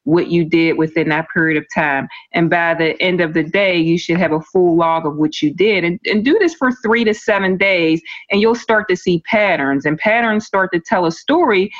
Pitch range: 170-225 Hz